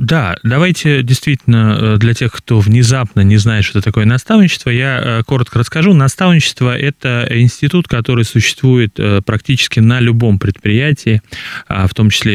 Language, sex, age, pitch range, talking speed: Russian, male, 20-39, 105-130 Hz, 130 wpm